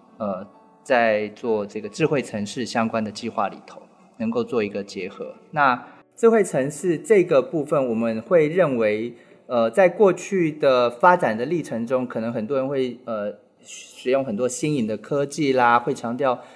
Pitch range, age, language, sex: 110-155 Hz, 20-39, Chinese, male